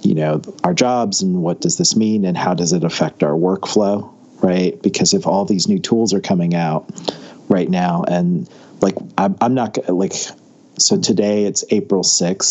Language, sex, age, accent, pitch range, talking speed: English, male, 40-59, American, 90-115 Hz, 180 wpm